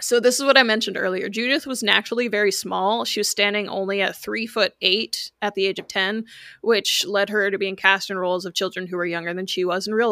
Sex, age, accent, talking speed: female, 20-39, American, 255 wpm